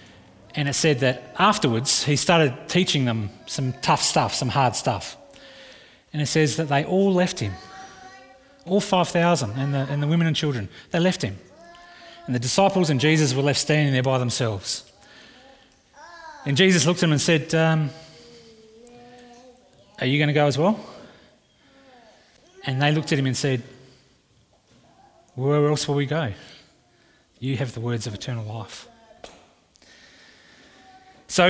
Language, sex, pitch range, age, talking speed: English, male, 125-190 Hz, 30-49, 155 wpm